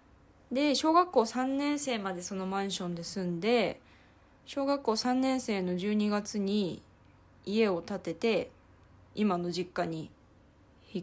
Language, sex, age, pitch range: Japanese, female, 20-39, 160-210 Hz